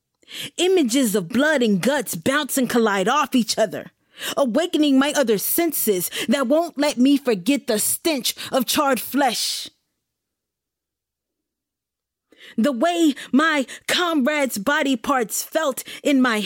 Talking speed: 125 wpm